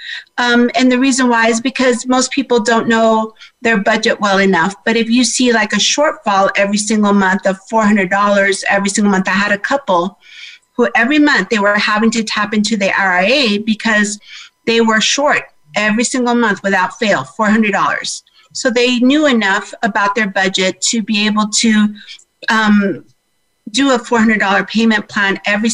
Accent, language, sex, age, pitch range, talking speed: American, English, female, 50-69, 200-240 Hz, 170 wpm